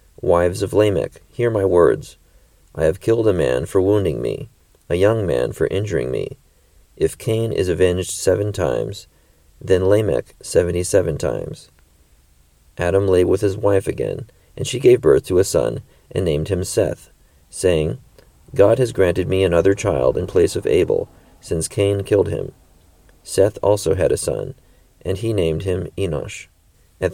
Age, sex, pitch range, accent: 40-59, male, 85-100 Hz, American